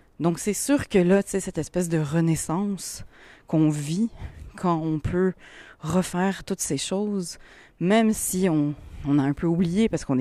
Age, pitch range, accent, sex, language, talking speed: 30-49, 135-180 Hz, French, female, French, 175 wpm